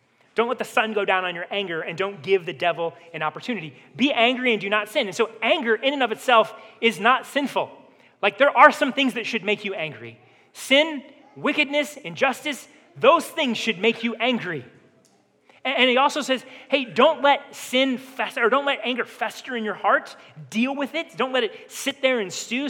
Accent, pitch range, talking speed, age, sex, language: American, 190-275 Hz, 210 wpm, 30-49, male, English